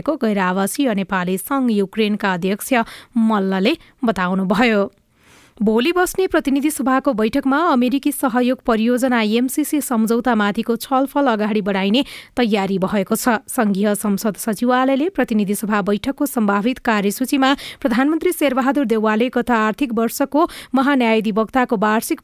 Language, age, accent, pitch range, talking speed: English, 30-49, Indian, 220-275 Hz, 115 wpm